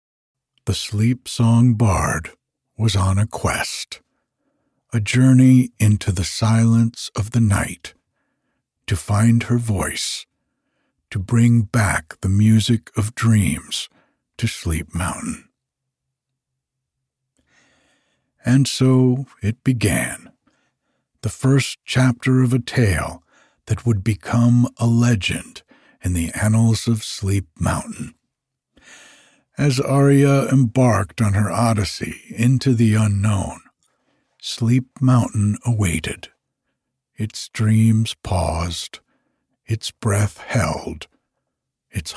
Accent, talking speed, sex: American, 100 wpm, male